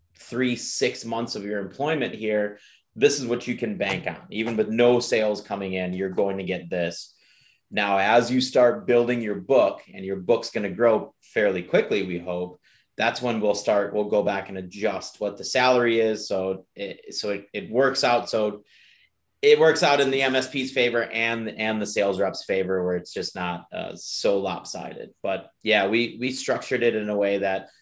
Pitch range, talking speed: 95-120 Hz, 200 wpm